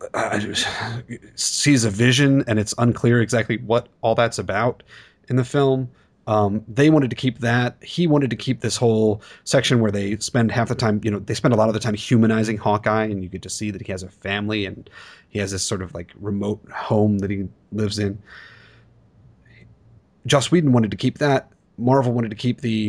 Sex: male